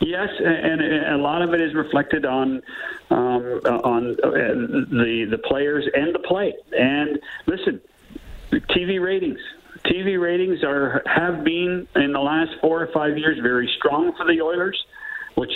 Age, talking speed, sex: 50-69, 150 wpm, male